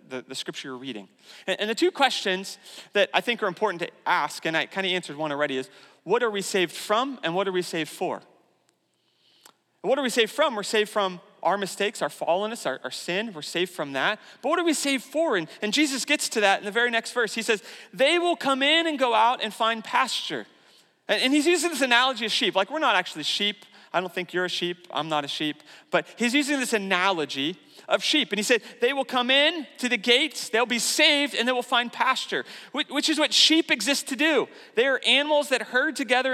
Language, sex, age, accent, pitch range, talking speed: English, male, 30-49, American, 200-265 Hz, 240 wpm